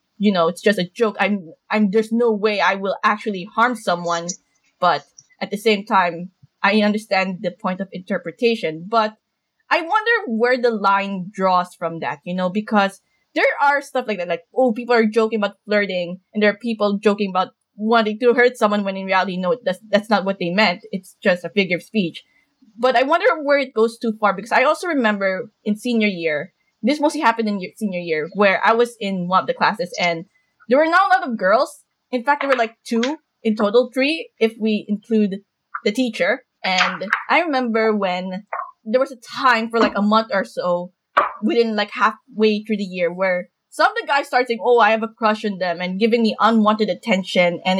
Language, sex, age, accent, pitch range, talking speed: English, female, 20-39, Filipino, 190-235 Hz, 210 wpm